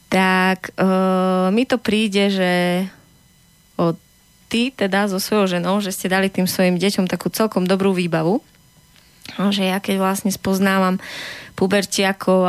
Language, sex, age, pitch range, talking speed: Slovak, female, 20-39, 180-200 Hz, 135 wpm